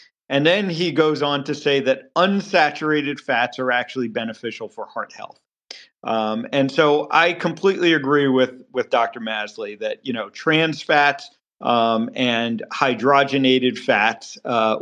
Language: English